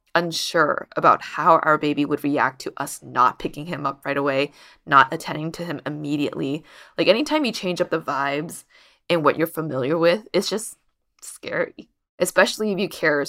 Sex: female